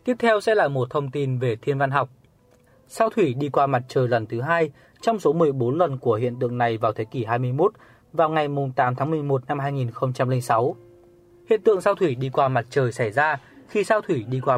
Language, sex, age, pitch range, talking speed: Vietnamese, male, 20-39, 120-165 Hz, 220 wpm